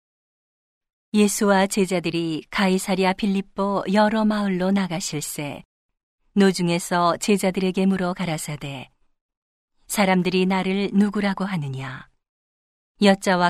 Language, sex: Korean, female